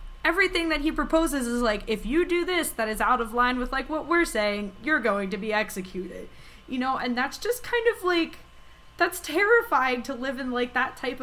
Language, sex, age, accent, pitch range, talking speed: English, female, 20-39, American, 190-240 Hz, 220 wpm